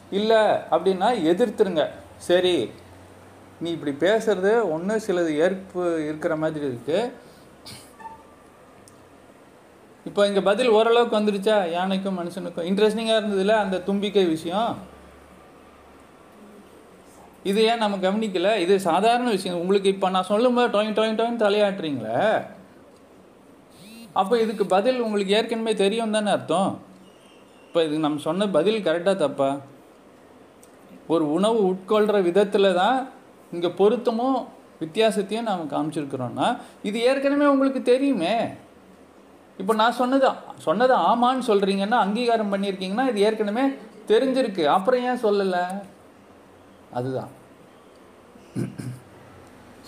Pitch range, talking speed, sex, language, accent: 175-225 Hz, 100 wpm, male, Tamil, native